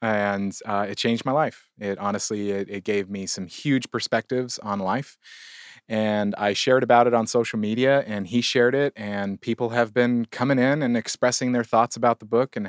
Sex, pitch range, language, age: male, 95-115 Hz, English, 30-49